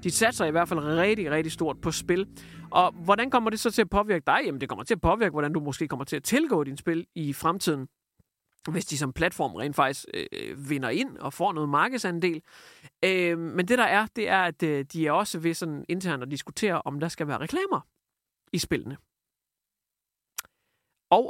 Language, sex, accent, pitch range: Danish, male, native, 160-225 Hz